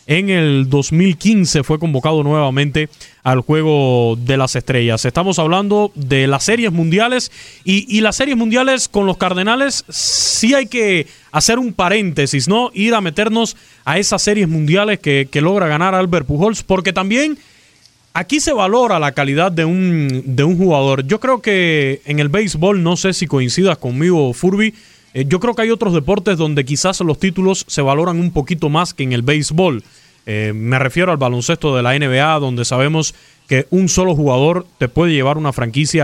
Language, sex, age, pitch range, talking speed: Spanish, male, 30-49, 145-195 Hz, 180 wpm